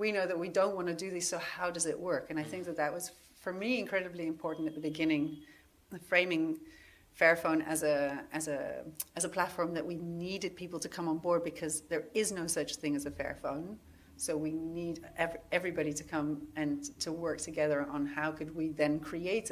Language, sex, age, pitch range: English, female, 40-59, 155-180 Hz